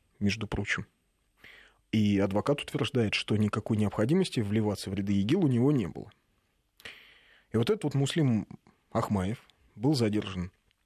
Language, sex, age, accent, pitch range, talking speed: Russian, male, 30-49, native, 100-135 Hz, 135 wpm